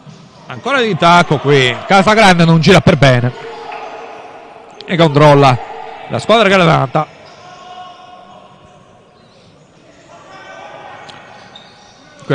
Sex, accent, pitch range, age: male, native, 150-205 Hz, 50-69